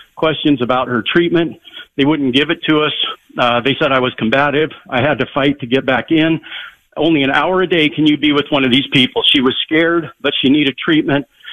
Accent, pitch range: American, 140-170 Hz